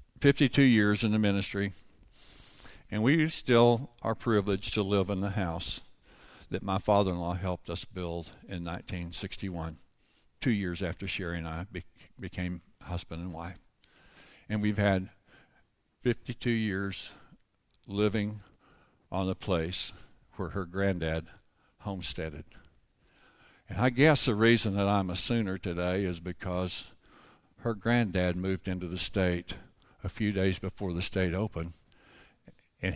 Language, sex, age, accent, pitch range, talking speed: English, male, 60-79, American, 95-120 Hz, 135 wpm